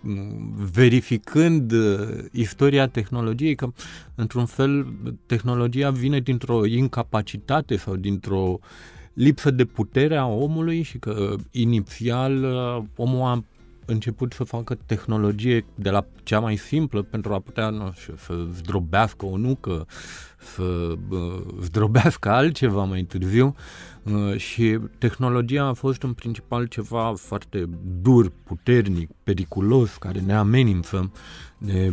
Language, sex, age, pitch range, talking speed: Romanian, male, 30-49, 100-130 Hz, 115 wpm